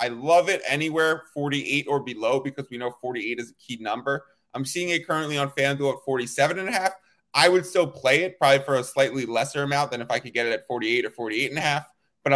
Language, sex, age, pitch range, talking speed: English, male, 20-39, 135-155 Hz, 250 wpm